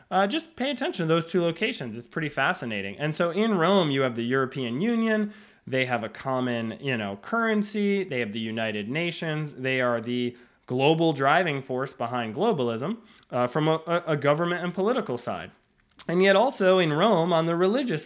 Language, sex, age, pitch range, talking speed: English, male, 20-39, 130-180 Hz, 185 wpm